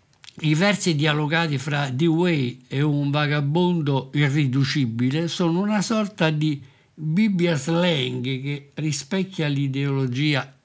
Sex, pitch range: male, 135-170 Hz